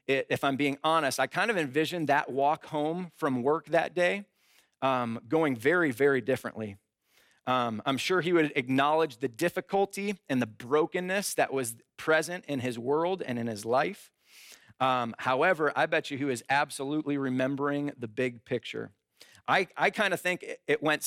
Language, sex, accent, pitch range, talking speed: English, male, American, 130-160 Hz, 170 wpm